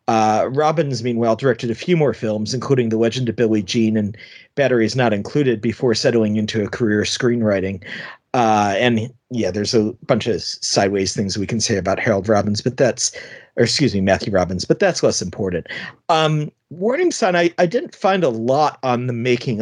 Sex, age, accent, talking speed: male, 40-59, American, 190 wpm